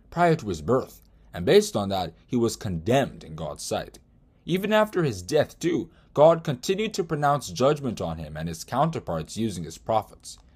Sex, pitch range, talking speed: male, 100-140 Hz, 180 wpm